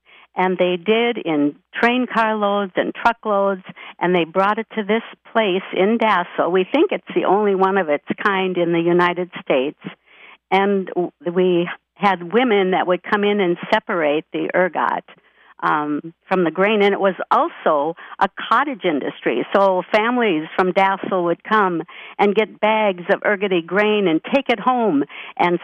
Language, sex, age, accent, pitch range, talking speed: English, female, 60-79, American, 185-220 Hz, 165 wpm